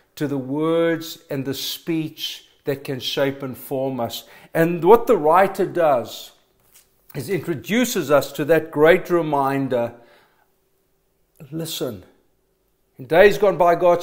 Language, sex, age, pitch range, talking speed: English, male, 60-79, 145-190 Hz, 130 wpm